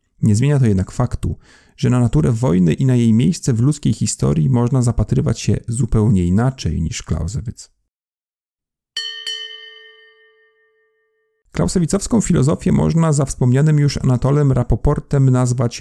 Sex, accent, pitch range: male, native, 105-140 Hz